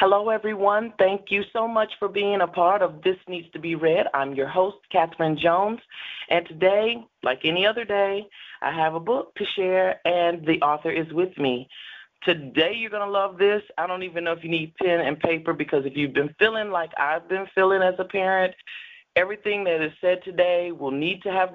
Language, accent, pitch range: English, American, 160-200 Hz